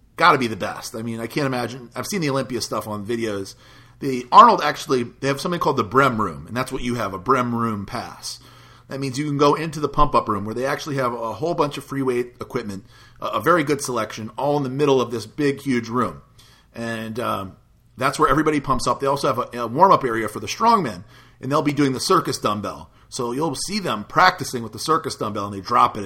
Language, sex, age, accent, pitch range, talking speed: English, male, 40-59, American, 115-140 Hz, 245 wpm